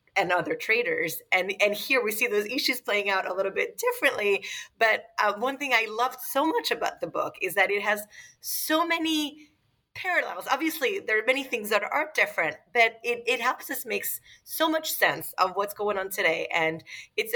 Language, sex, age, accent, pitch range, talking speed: English, female, 30-49, American, 175-260 Hz, 200 wpm